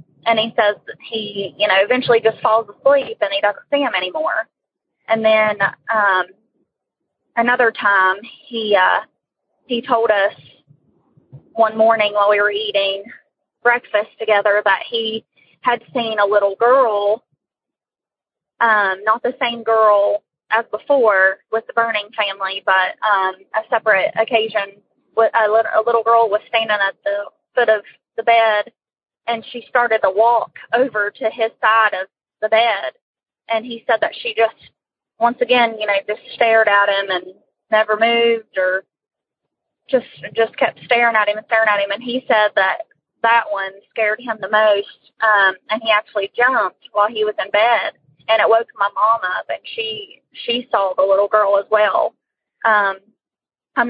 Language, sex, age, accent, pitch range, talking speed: English, female, 20-39, American, 205-235 Hz, 165 wpm